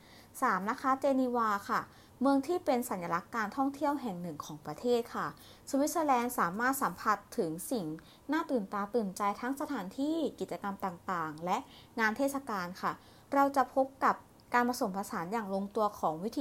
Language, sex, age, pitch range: Thai, female, 20-39, 195-265 Hz